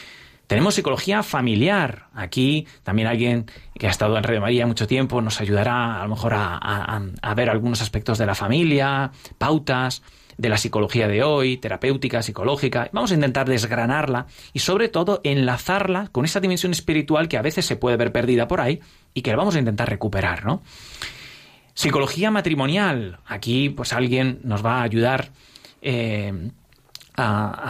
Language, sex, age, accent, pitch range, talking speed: Spanish, male, 30-49, Spanish, 110-135 Hz, 160 wpm